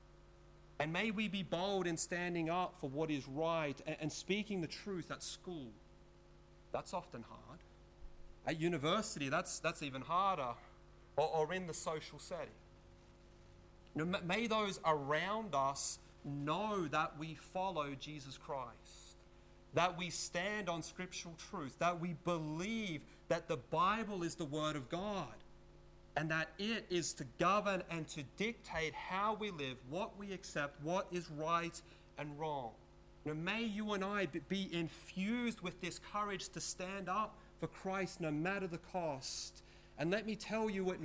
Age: 30-49